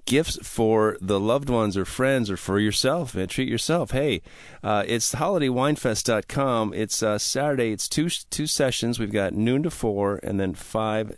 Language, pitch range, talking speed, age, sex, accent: English, 100-125 Hz, 170 wpm, 40-59, male, American